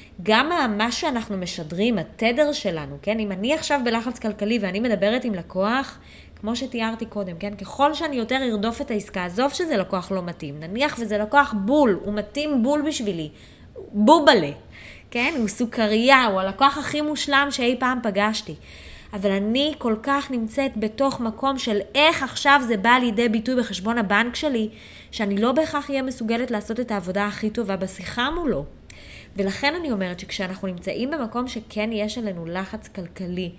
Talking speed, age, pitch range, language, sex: 160 wpm, 20-39, 195-255 Hz, Hebrew, female